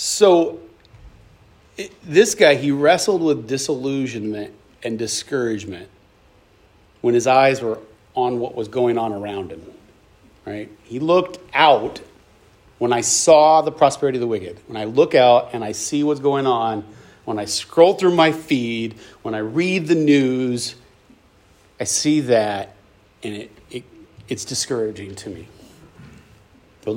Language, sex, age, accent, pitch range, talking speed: English, male, 40-59, American, 105-140 Hz, 140 wpm